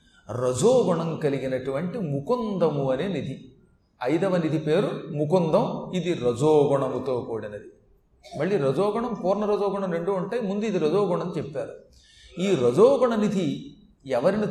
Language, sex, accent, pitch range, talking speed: Telugu, male, native, 165-210 Hz, 110 wpm